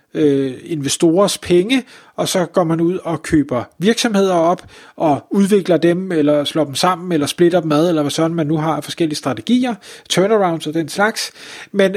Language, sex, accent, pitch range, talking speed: Danish, male, native, 155-195 Hz, 175 wpm